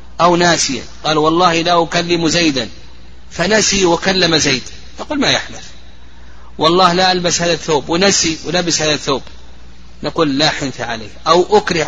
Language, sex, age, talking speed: Arabic, male, 30-49, 140 wpm